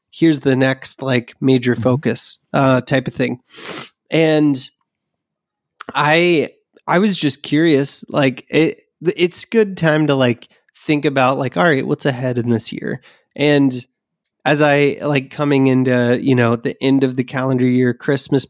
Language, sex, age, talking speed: English, male, 20-39, 155 wpm